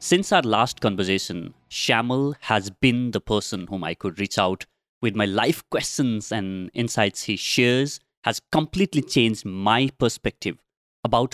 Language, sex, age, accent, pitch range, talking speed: English, male, 30-49, Indian, 105-140 Hz, 150 wpm